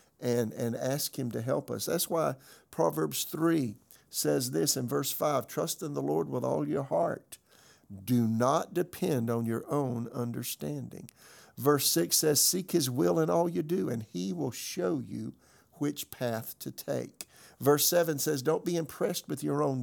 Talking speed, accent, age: 180 wpm, American, 50-69